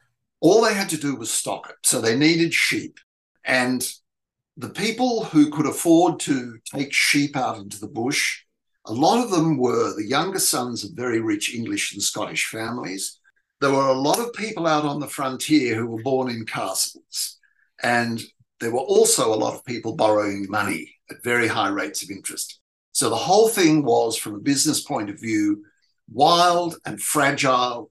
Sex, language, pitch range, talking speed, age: male, English, 120-175 Hz, 185 wpm, 60-79